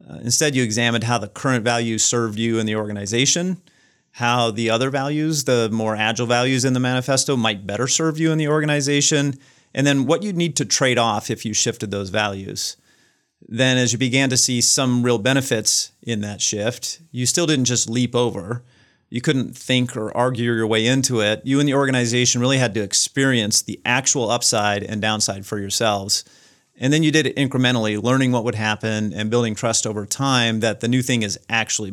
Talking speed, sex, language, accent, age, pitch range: 200 wpm, male, English, American, 40-59, 110-135 Hz